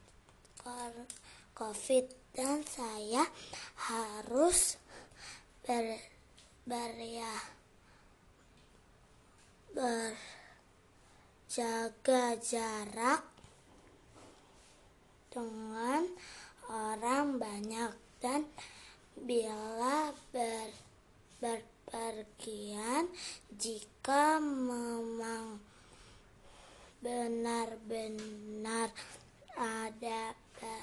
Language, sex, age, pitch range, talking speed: Indonesian, female, 20-39, 225-255 Hz, 35 wpm